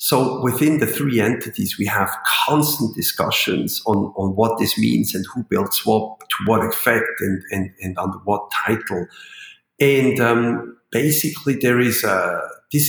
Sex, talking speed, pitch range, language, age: male, 155 wpm, 105-140 Hz, English, 50-69